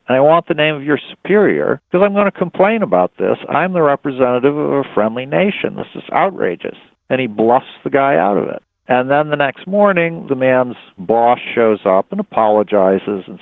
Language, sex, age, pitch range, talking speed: English, male, 50-69, 115-155 Hz, 205 wpm